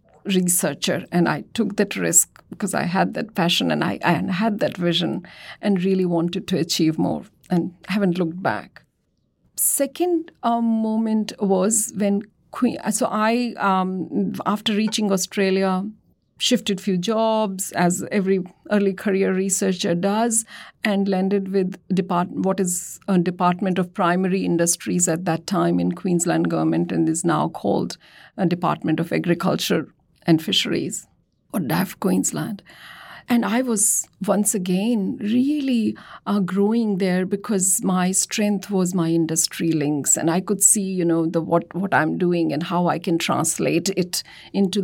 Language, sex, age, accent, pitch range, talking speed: English, female, 50-69, Indian, 170-210 Hz, 150 wpm